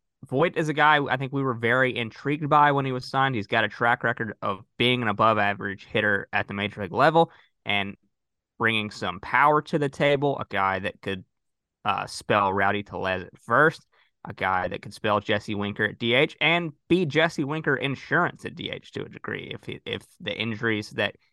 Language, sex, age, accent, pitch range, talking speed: English, male, 20-39, American, 100-125 Hz, 205 wpm